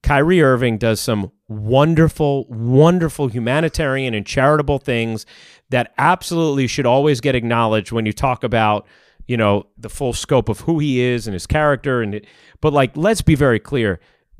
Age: 30-49